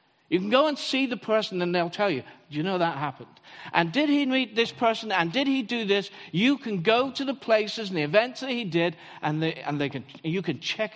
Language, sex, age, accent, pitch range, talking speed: English, male, 50-69, British, 150-220 Hz, 255 wpm